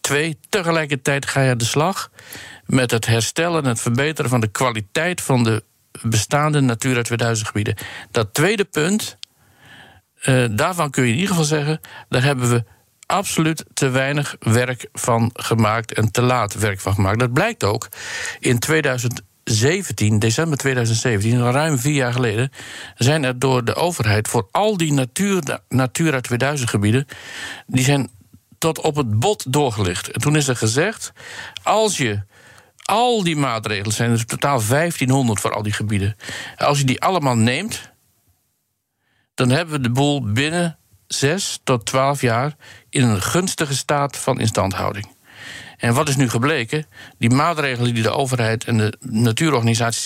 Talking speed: 150 wpm